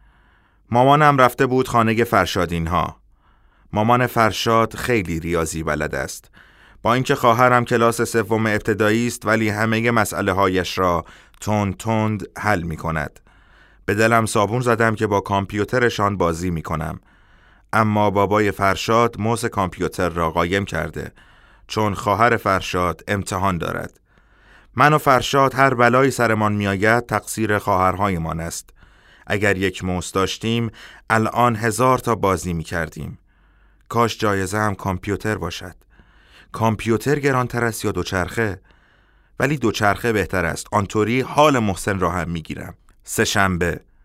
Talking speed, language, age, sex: 130 wpm, Persian, 30-49, male